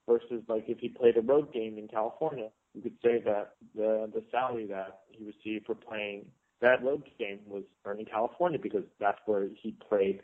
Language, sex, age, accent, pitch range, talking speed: English, male, 30-49, American, 115-165 Hz, 195 wpm